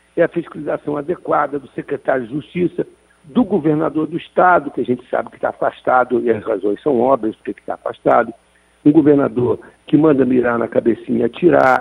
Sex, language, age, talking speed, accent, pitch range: male, Portuguese, 60-79, 180 wpm, Brazilian, 145-245 Hz